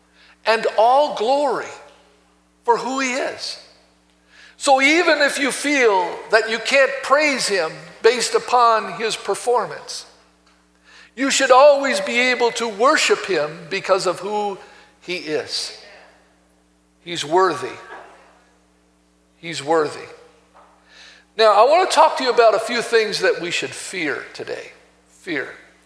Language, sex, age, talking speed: English, male, 60-79, 125 wpm